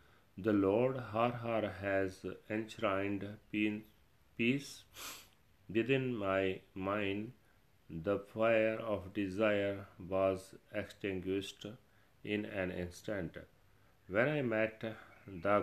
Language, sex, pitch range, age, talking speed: Punjabi, male, 95-110 Hz, 40-59, 90 wpm